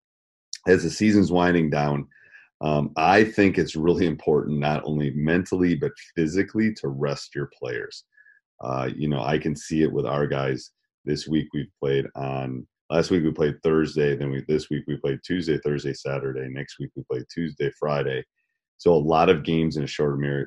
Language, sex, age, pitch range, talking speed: English, male, 30-49, 70-85 Hz, 190 wpm